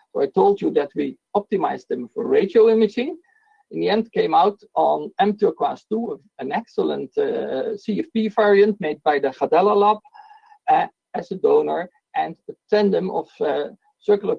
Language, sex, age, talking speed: English, male, 50-69, 160 wpm